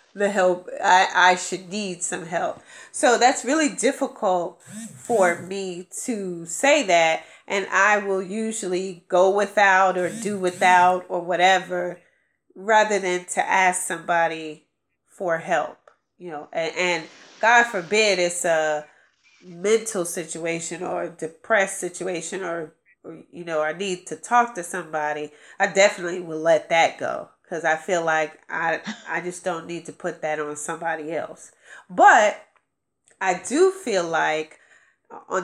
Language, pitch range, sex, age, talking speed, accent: English, 170-205 Hz, female, 30-49, 145 wpm, American